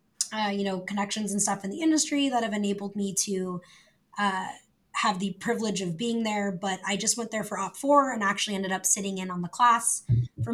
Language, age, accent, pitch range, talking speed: English, 20-39, American, 195-225 Hz, 220 wpm